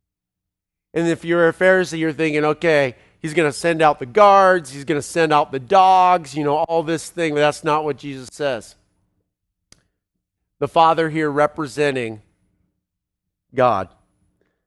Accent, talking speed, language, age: American, 150 wpm, English, 40-59